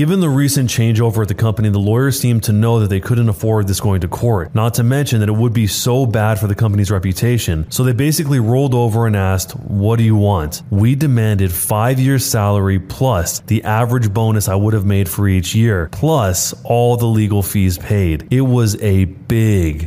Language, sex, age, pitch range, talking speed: English, male, 20-39, 100-120 Hz, 210 wpm